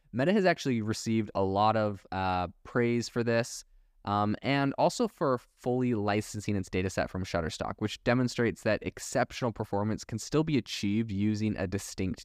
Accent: American